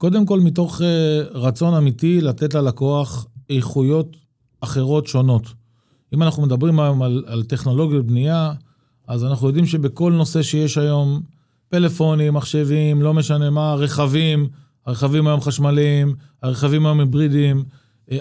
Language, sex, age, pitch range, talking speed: Hebrew, male, 40-59, 135-170 Hz, 130 wpm